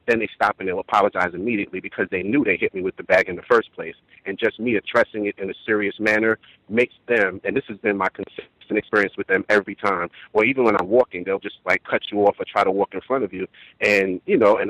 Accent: American